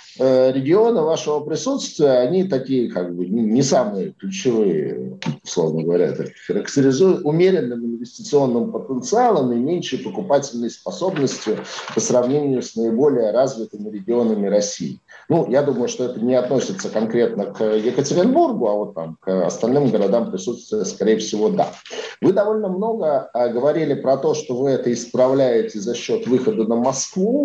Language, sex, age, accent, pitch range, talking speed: Russian, male, 50-69, native, 105-145 Hz, 135 wpm